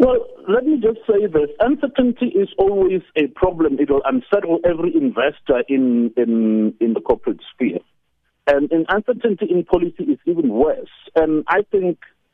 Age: 50-69